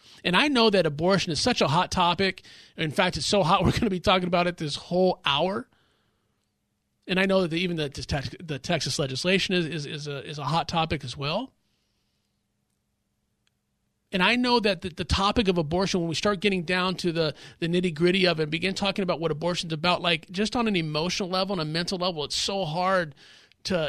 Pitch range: 160-195 Hz